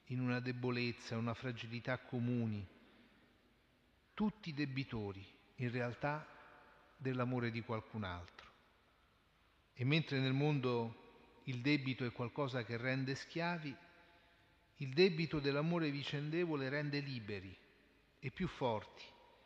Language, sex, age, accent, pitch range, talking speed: Italian, male, 40-59, native, 115-150 Hz, 105 wpm